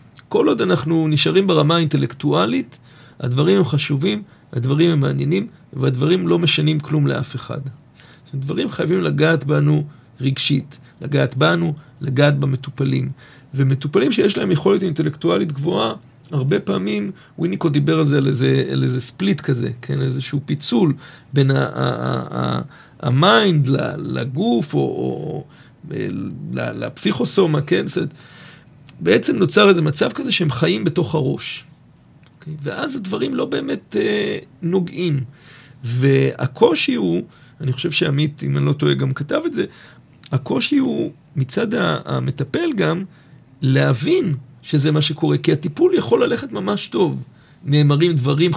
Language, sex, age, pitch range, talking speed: Hebrew, male, 40-59, 135-165 Hz, 130 wpm